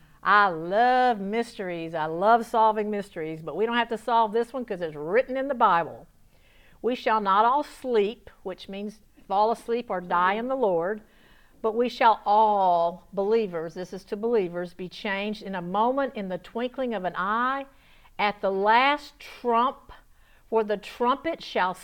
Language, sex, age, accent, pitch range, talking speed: English, female, 50-69, American, 195-250 Hz, 175 wpm